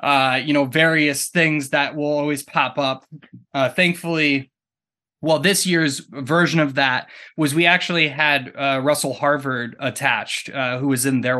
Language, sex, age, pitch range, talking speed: English, male, 20-39, 125-145 Hz, 165 wpm